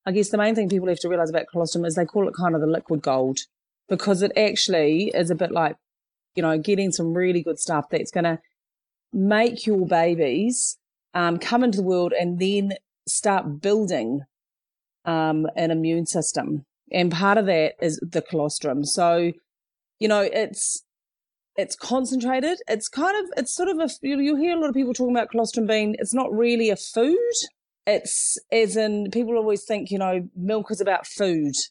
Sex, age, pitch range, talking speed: female, 30-49, 165-215 Hz, 190 wpm